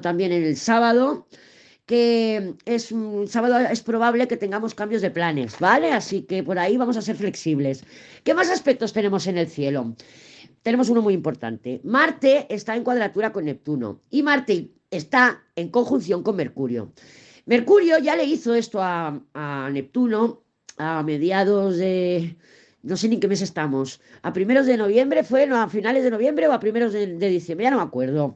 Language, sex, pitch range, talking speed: Spanish, female, 170-240 Hz, 180 wpm